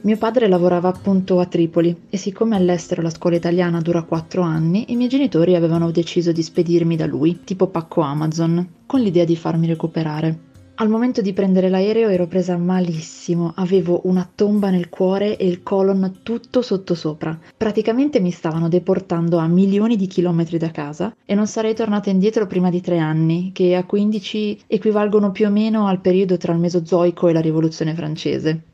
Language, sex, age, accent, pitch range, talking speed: Italian, female, 20-39, native, 175-220 Hz, 180 wpm